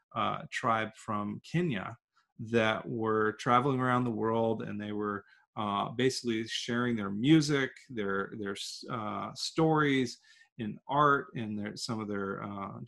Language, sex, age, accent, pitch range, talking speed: English, male, 40-59, American, 110-145 Hz, 135 wpm